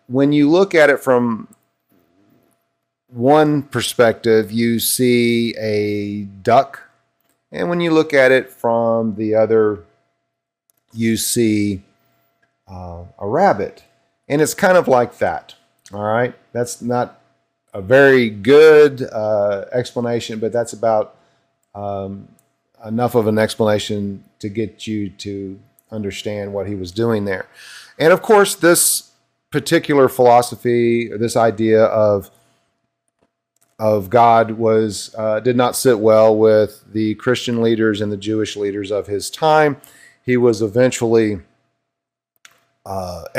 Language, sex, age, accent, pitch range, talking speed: English, male, 40-59, American, 105-125 Hz, 125 wpm